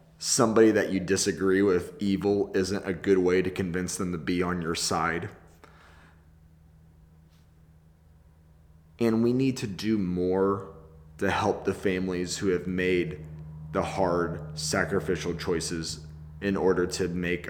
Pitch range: 80-100 Hz